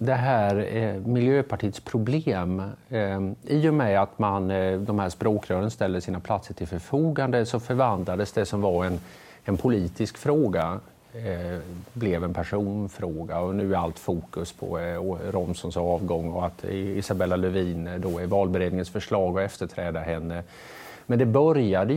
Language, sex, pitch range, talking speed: Swedish, male, 90-115 Hz, 135 wpm